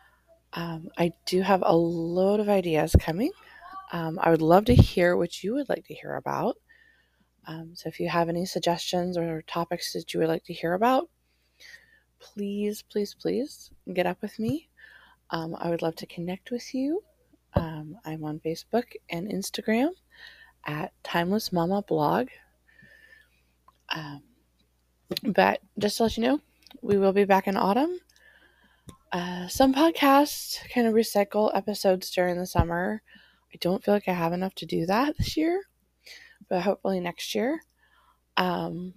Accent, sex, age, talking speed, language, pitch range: American, female, 20-39, 155 wpm, English, 170-230 Hz